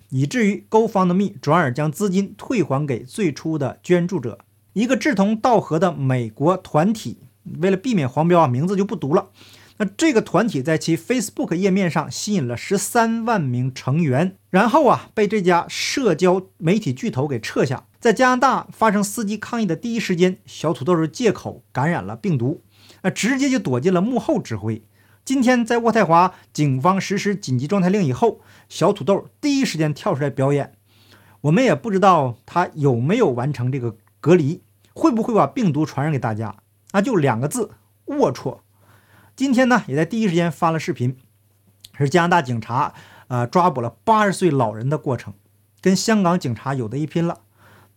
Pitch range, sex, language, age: 125-200 Hz, male, Chinese, 50-69